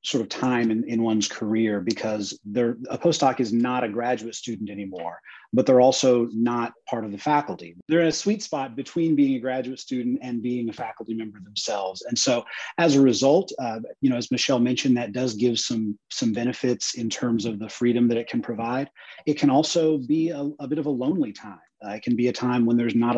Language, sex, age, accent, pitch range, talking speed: English, male, 30-49, American, 110-130 Hz, 225 wpm